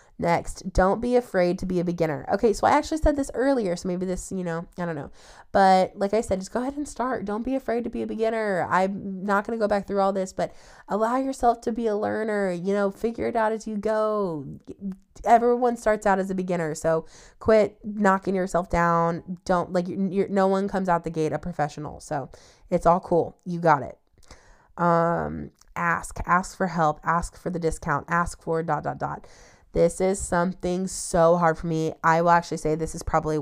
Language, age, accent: English, 20-39, American